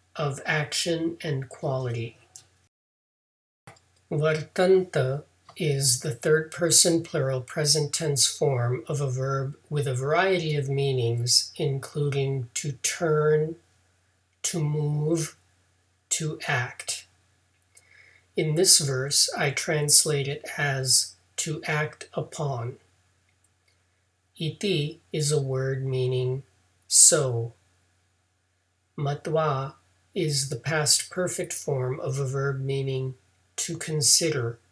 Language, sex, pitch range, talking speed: English, male, 95-155 Hz, 95 wpm